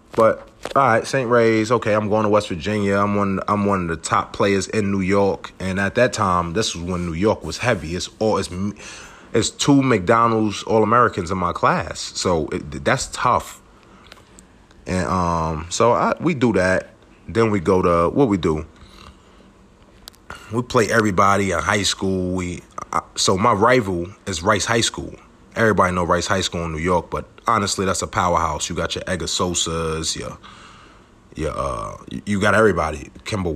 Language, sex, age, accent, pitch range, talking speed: English, male, 30-49, American, 85-110 Hz, 180 wpm